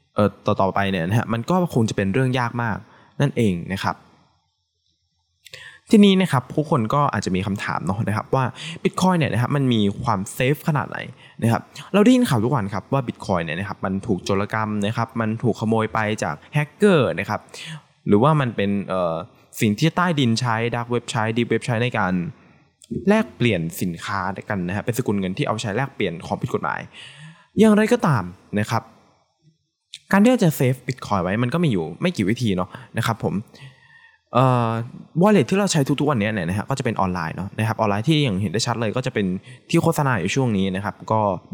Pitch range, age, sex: 100-145 Hz, 20-39, male